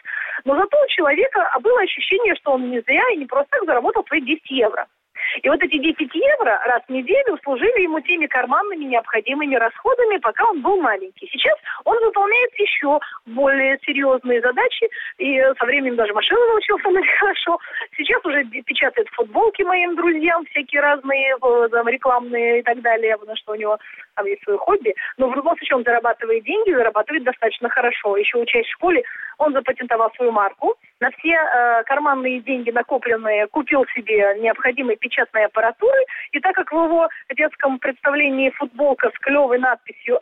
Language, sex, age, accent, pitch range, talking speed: Russian, female, 30-49, native, 245-390 Hz, 165 wpm